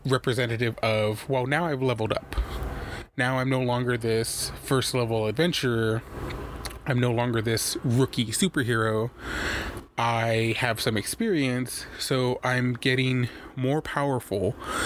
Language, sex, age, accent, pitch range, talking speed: English, male, 20-39, American, 110-130 Hz, 120 wpm